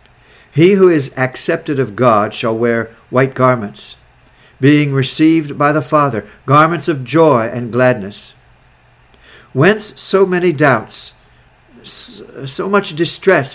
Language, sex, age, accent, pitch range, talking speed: English, male, 60-79, American, 120-155 Hz, 120 wpm